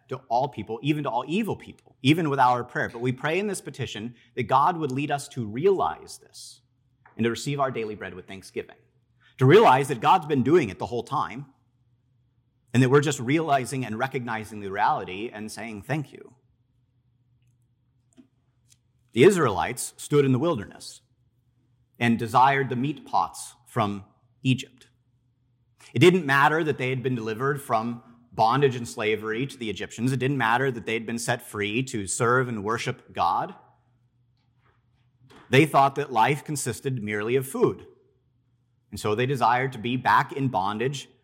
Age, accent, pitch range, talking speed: 40-59, American, 120-135 Hz, 165 wpm